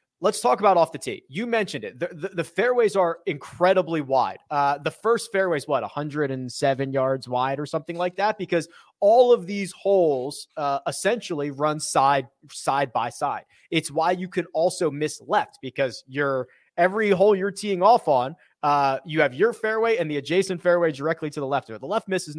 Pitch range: 135-180 Hz